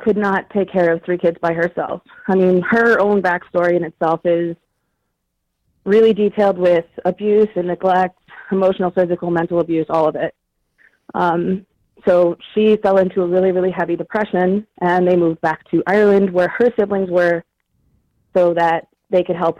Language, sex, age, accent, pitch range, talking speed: English, female, 30-49, American, 175-210 Hz, 170 wpm